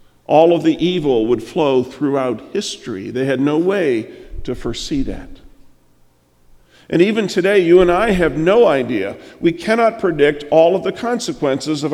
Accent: American